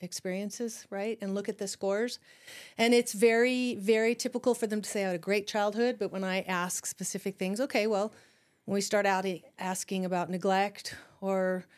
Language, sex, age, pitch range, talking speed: English, female, 40-59, 190-225 Hz, 190 wpm